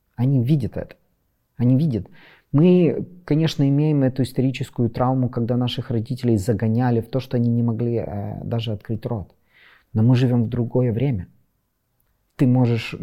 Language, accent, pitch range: Russian, native, 110-130 Hz